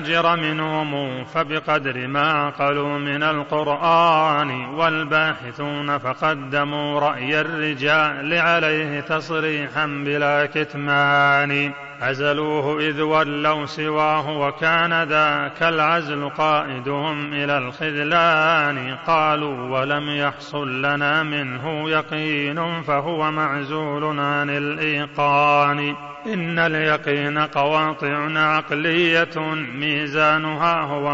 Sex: male